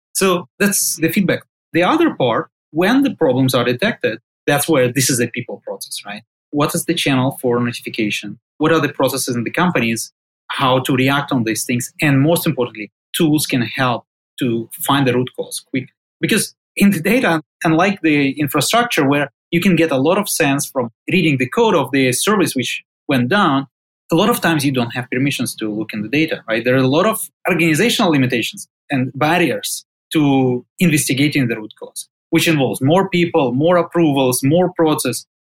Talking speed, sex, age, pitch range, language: 190 wpm, male, 30-49, 125-170 Hz, English